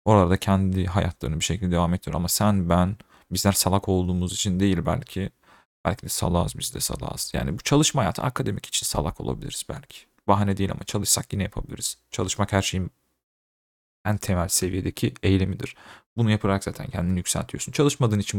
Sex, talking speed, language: male, 165 wpm, Turkish